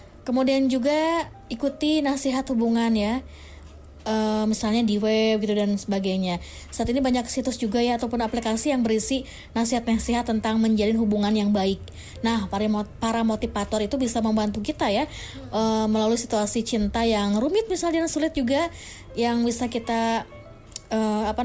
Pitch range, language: 215-255 Hz, Indonesian